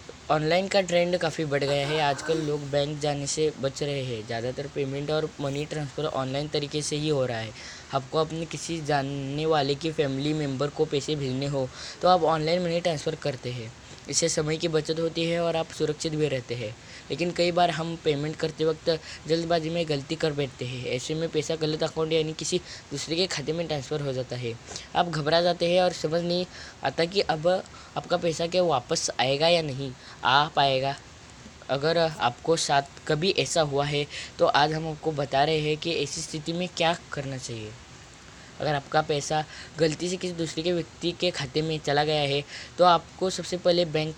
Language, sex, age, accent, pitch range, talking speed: Hindi, female, 20-39, native, 140-165 Hz, 200 wpm